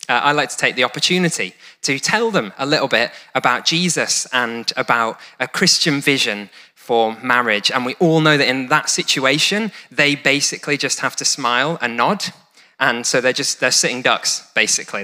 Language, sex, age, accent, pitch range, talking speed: English, male, 20-39, British, 120-155 Hz, 185 wpm